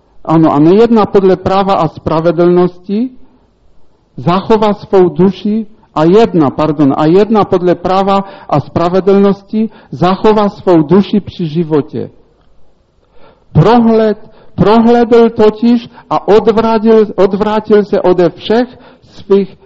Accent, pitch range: Polish, 165-210 Hz